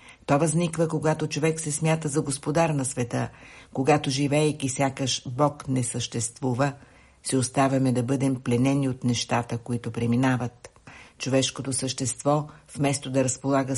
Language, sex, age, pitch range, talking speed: Bulgarian, female, 60-79, 130-155 Hz, 130 wpm